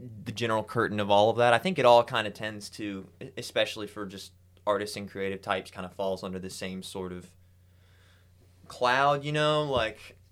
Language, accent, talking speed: English, American, 200 wpm